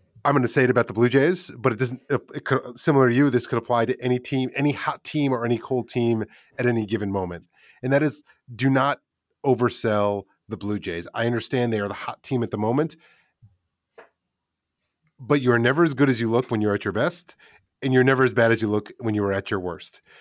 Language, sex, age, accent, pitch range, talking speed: English, male, 30-49, American, 115-140 Hz, 230 wpm